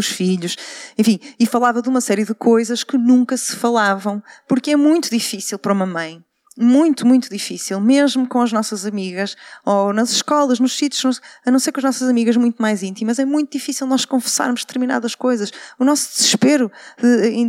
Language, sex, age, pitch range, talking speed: Portuguese, female, 20-39, 210-275 Hz, 185 wpm